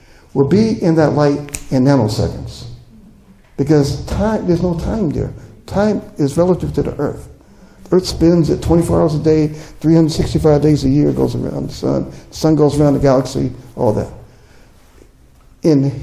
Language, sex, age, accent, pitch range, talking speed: English, male, 60-79, American, 130-165 Hz, 155 wpm